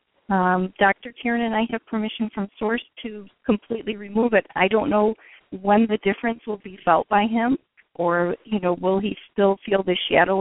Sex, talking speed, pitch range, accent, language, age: female, 190 wpm, 190-230 Hz, American, English, 40-59